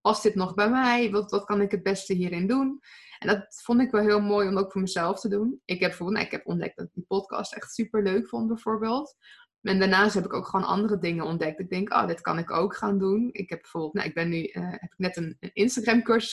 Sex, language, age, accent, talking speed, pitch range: female, Dutch, 20-39, Dutch, 270 wpm, 190-225 Hz